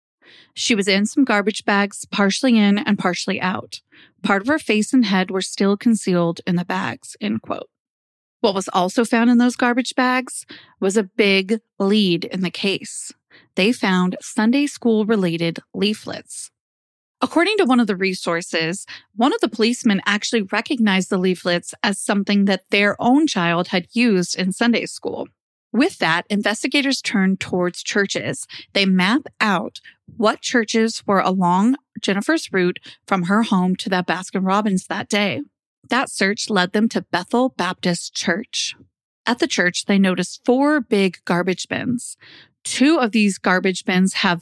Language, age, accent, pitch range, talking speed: English, 30-49, American, 185-235 Hz, 160 wpm